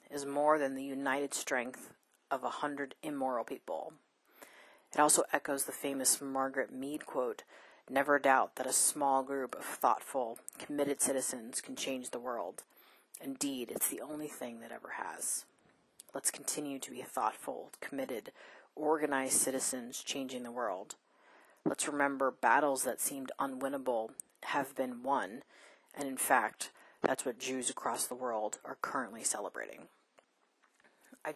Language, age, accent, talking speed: English, 30-49, American, 140 wpm